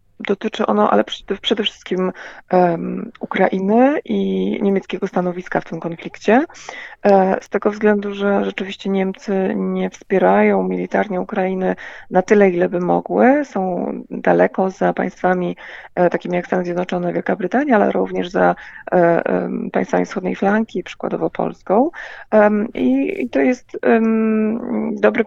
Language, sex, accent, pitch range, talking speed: Polish, female, native, 185-215 Hz, 115 wpm